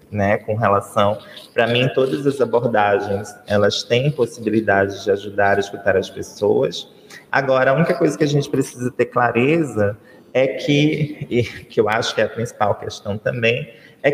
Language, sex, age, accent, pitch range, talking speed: Portuguese, male, 20-39, Brazilian, 110-145 Hz, 170 wpm